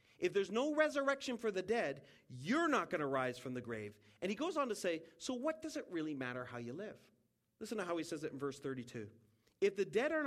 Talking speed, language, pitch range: 250 wpm, English, 120-200 Hz